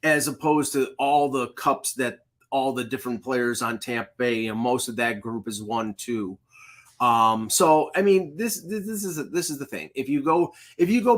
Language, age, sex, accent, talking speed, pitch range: English, 30-49, male, American, 220 wpm, 120-150 Hz